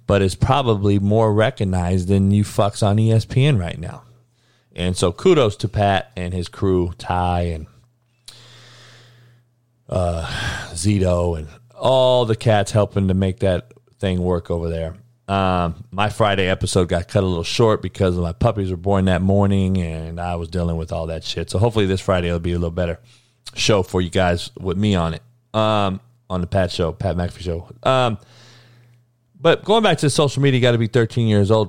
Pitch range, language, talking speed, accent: 95-120 Hz, English, 190 wpm, American